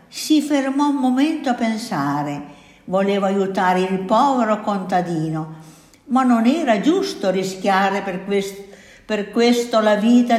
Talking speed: 120 wpm